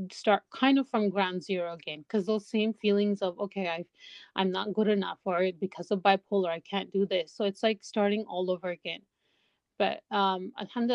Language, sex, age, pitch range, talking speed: English, female, 30-49, 190-210 Hz, 195 wpm